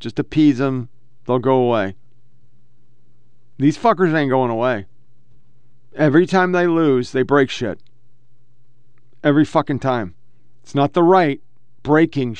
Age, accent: 40-59, American